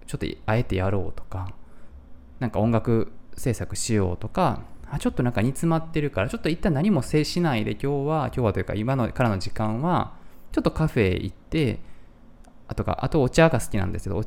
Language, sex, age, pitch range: Japanese, male, 20-39, 95-145 Hz